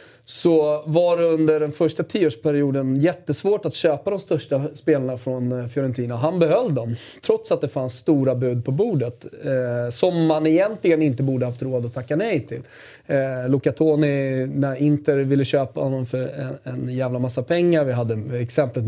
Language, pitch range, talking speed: Swedish, 130-155 Hz, 175 wpm